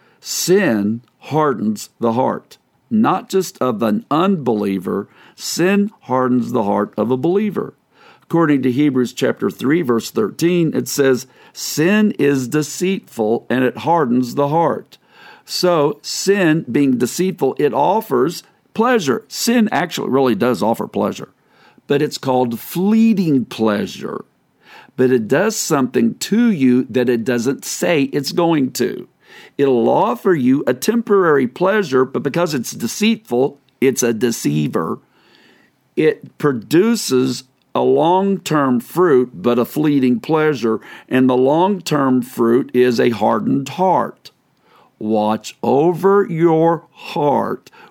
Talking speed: 125 wpm